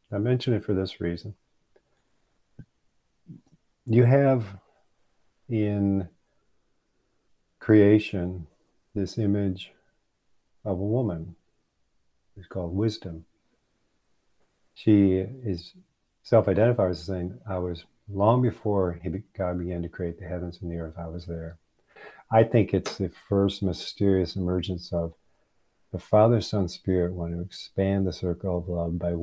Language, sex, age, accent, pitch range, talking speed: English, male, 50-69, American, 85-105 Hz, 125 wpm